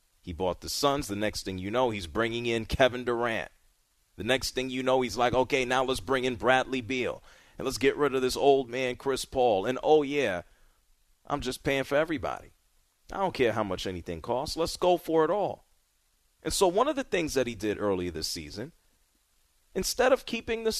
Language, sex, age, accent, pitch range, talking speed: English, male, 30-49, American, 115-160 Hz, 215 wpm